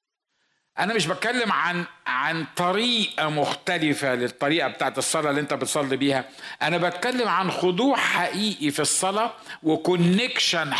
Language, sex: Arabic, male